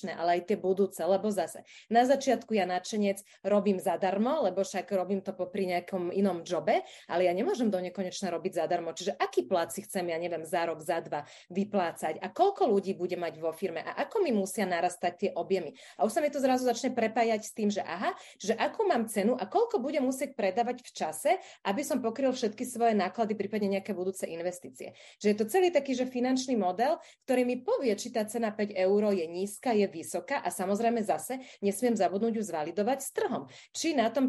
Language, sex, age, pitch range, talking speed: Slovak, female, 30-49, 185-245 Hz, 205 wpm